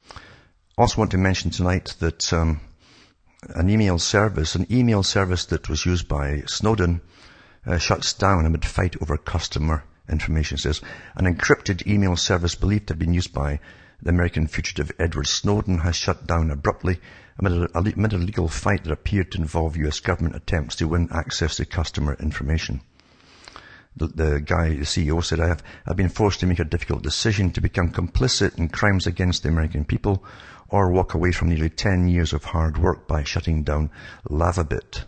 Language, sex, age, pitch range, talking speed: English, male, 60-79, 75-95 Hz, 175 wpm